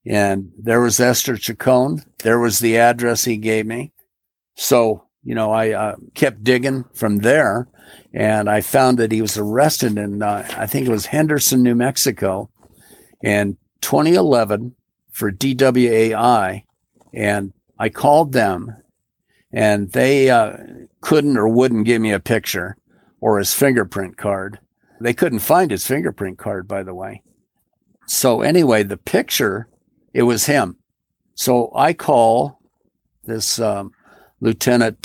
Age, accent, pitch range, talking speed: 50-69, American, 105-125 Hz, 140 wpm